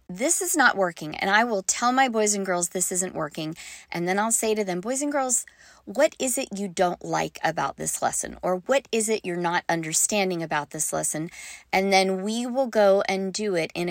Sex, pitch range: female, 185-245 Hz